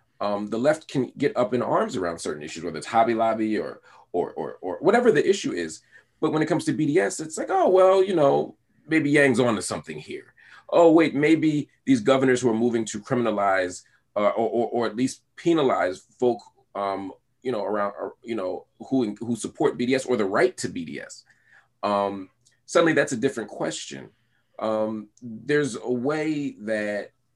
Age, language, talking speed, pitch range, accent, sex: 30-49, English, 190 wpm, 105-140 Hz, American, male